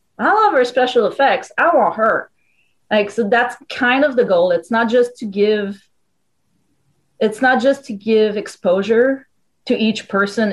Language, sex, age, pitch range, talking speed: English, female, 30-49, 185-250 Hz, 165 wpm